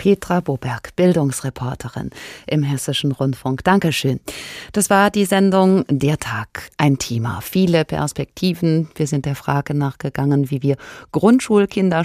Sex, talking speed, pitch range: female, 125 wpm, 140-180 Hz